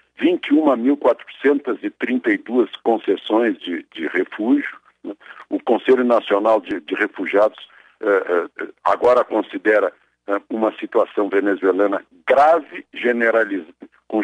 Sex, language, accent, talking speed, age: male, Portuguese, Brazilian, 90 wpm, 60-79